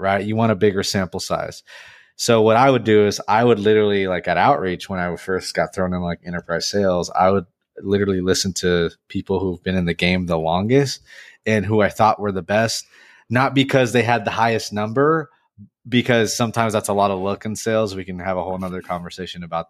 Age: 30-49